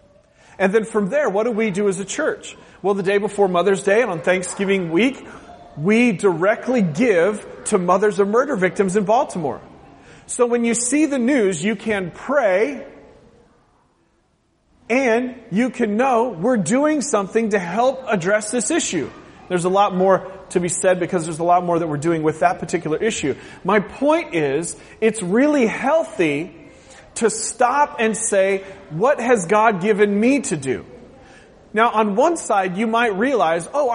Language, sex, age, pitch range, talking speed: English, male, 30-49, 175-230 Hz, 170 wpm